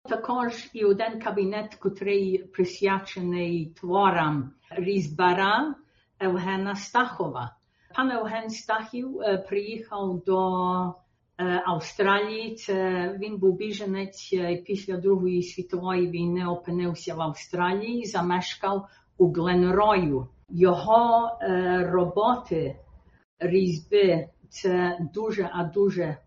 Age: 50-69